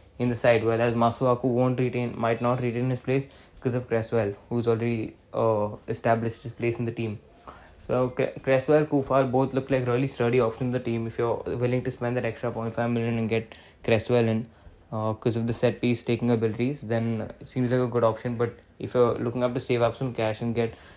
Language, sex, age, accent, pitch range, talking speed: English, male, 20-39, Indian, 115-130 Hz, 220 wpm